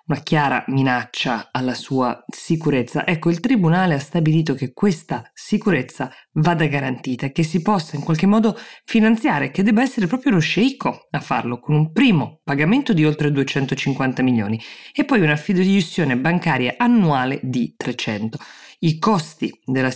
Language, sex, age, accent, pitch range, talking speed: Italian, female, 20-39, native, 130-165 Hz, 155 wpm